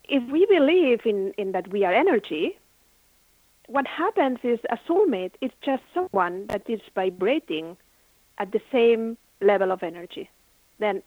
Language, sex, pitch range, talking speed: English, female, 195-280 Hz, 145 wpm